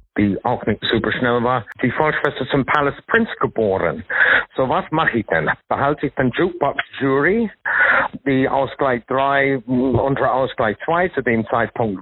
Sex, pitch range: male, 115-145 Hz